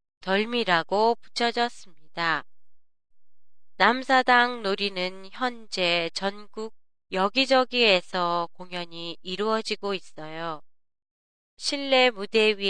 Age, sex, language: 20-39, female, Japanese